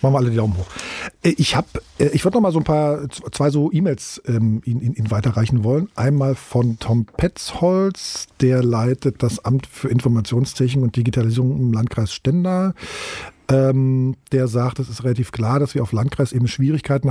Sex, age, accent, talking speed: male, 50-69, German, 170 wpm